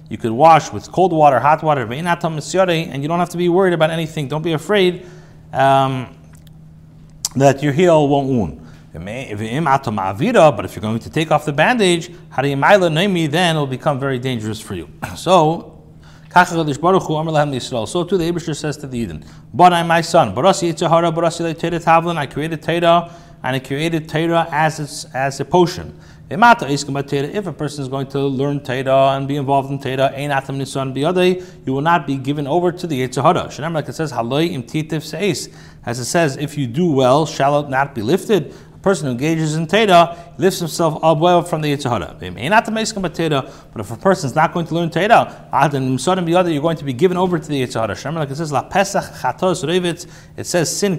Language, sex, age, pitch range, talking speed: English, male, 30-49, 135-170 Hz, 165 wpm